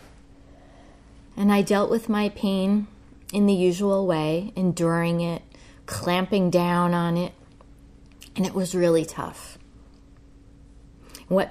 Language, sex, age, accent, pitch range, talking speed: English, female, 30-49, American, 150-190 Hz, 115 wpm